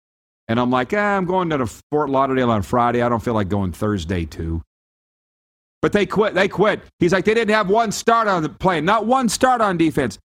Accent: American